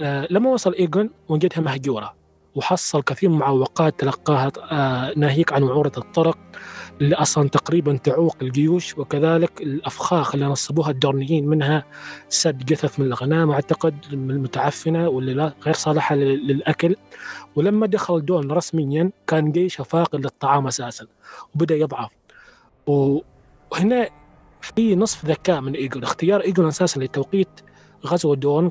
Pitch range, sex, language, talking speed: 140-170 Hz, male, Arabic, 125 wpm